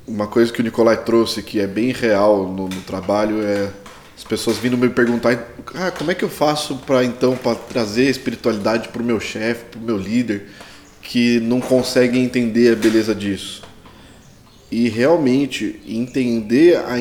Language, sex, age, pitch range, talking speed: Portuguese, male, 20-39, 110-135 Hz, 175 wpm